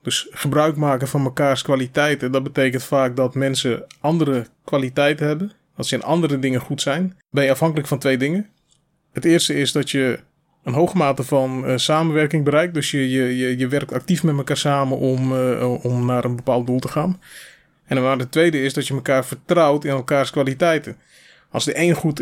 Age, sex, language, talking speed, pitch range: 20-39, male, Dutch, 200 wpm, 130-155 Hz